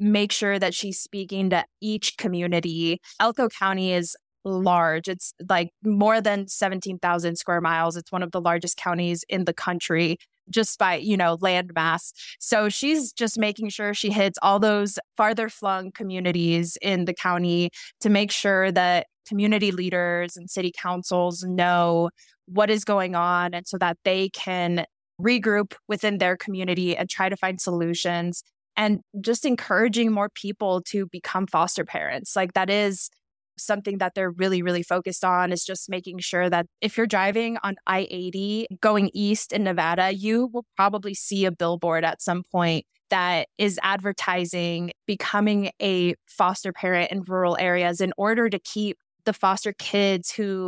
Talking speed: 160 wpm